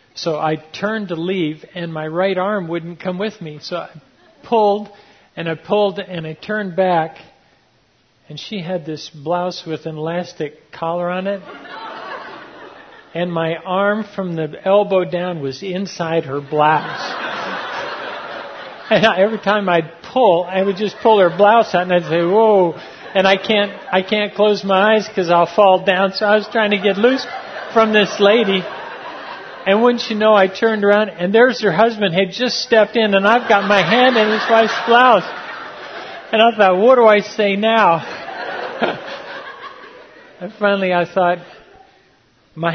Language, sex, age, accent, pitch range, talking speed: English, male, 50-69, American, 175-215 Hz, 165 wpm